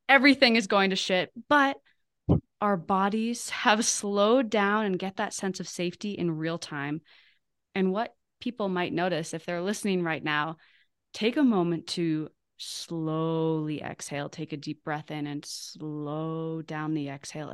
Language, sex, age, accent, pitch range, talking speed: English, female, 20-39, American, 155-200 Hz, 155 wpm